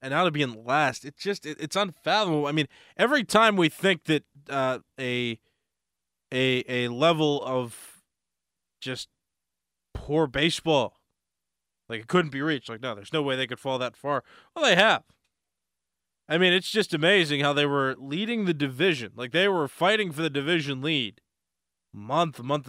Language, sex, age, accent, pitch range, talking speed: English, male, 20-39, American, 130-180 Hz, 175 wpm